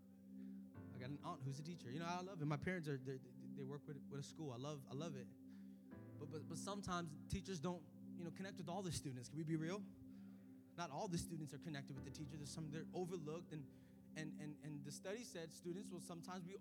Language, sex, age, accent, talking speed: English, male, 20-39, American, 230 wpm